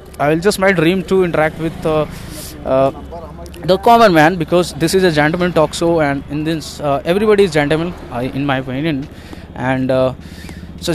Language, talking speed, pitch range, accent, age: English, 185 wpm, 135-170 Hz, Indian, 10-29